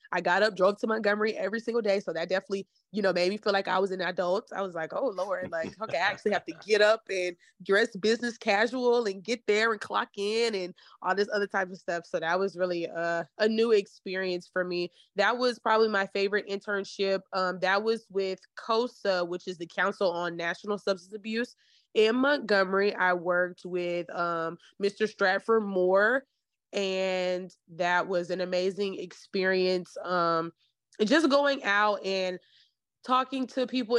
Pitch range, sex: 185-220 Hz, female